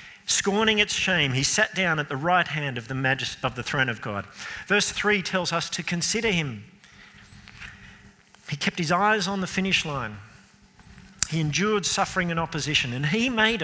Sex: male